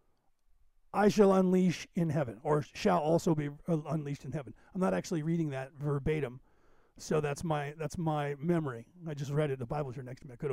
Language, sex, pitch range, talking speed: English, male, 145-185 Hz, 205 wpm